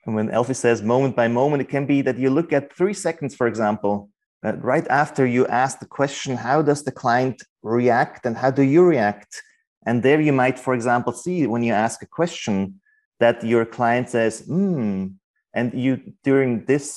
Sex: male